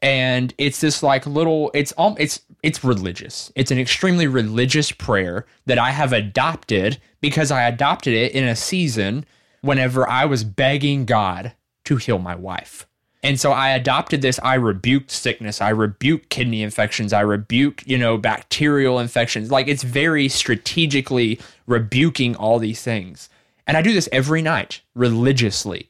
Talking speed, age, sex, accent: 160 wpm, 20-39, male, American